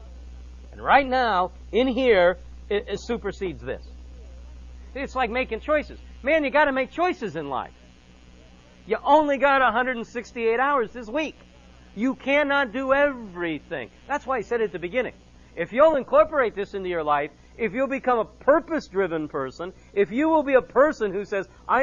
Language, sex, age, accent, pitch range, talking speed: English, male, 50-69, American, 165-255 Hz, 165 wpm